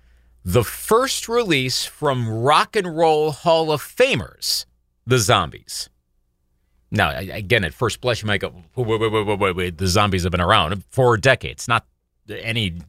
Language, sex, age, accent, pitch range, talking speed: English, male, 40-59, American, 80-125 Hz, 165 wpm